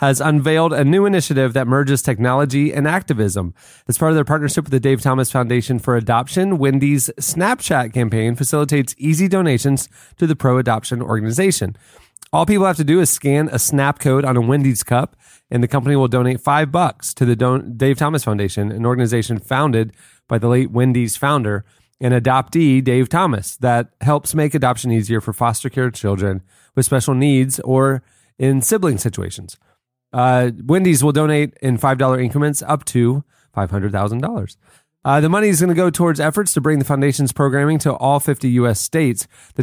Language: English